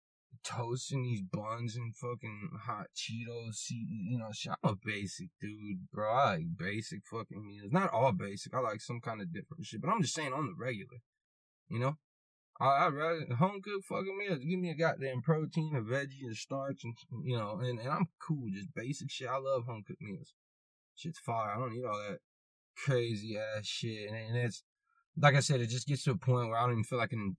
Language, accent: English, American